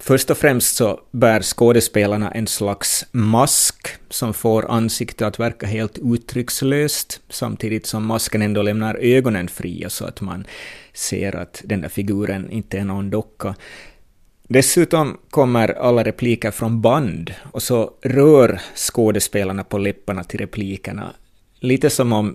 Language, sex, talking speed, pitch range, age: Swedish, male, 140 wpm, 100-125 Hz, 30-49